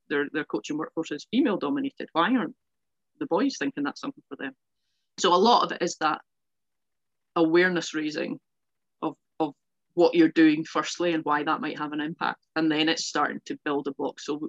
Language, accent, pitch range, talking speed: English, British, 150-175 Hz, 195 wpm